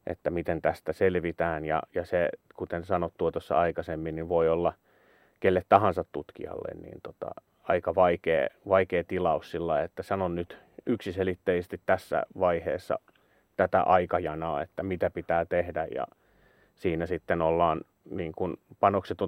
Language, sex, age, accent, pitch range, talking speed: Finnish, male, 30-49, native, 85-105 Hz, 135 wpm